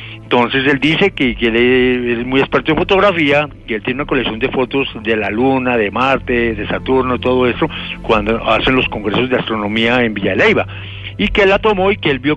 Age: 60-79